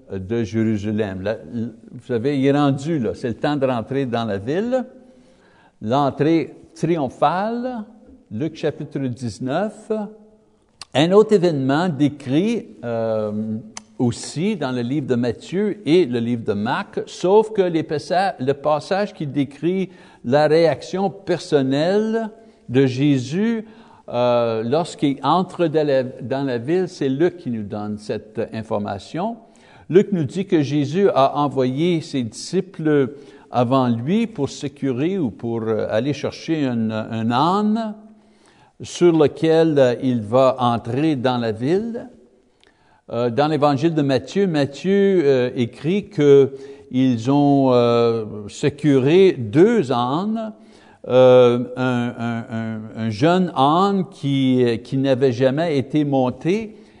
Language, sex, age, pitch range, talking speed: French, male, 60-79, 125-180 Hz, 120 wpm